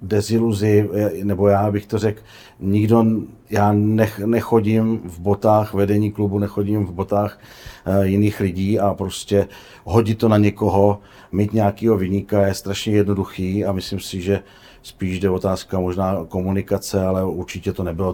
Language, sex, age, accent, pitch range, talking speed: Czech, male, 40-59, native, 90-100 Hz, 150 wpm